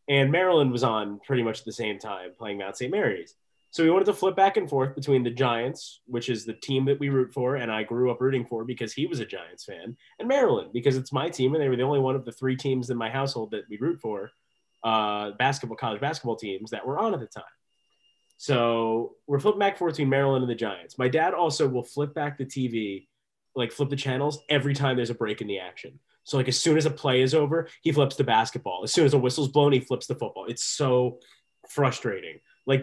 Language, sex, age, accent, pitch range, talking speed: English, male, 30-49, American, 125-155 Hz, 250 wpm